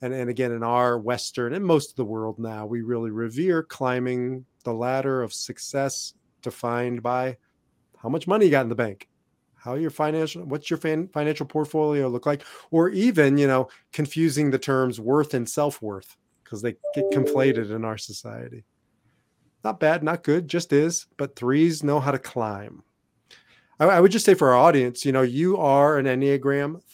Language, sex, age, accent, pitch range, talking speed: English, male, 30-49, American, 120-150 Hz, 185 wpm